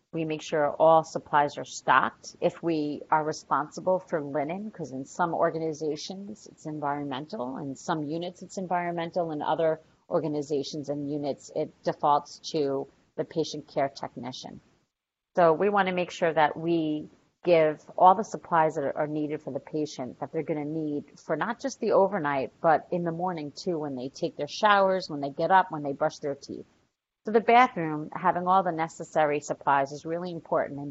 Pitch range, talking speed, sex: 150-175 Hz, 185 wpm, female